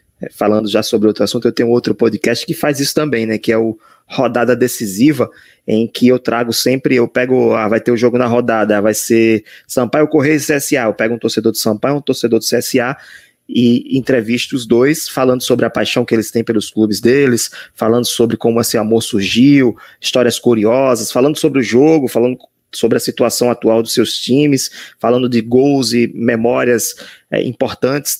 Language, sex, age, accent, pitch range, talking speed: Portuguese, male, 20-39, Brazilian, 115-130 Hz, 195 wpm